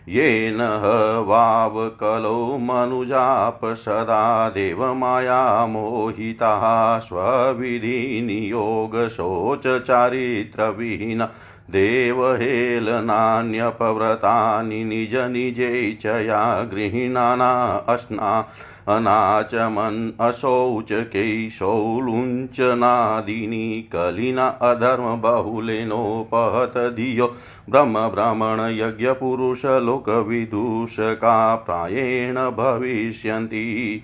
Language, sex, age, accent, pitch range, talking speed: Hindi, male, 50-69, native, 110-125 Hz, 50 wpm